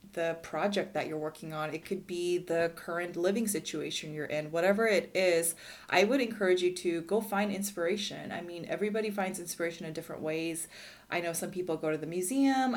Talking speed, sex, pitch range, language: 195 wpm, female, 160-210 Hz, English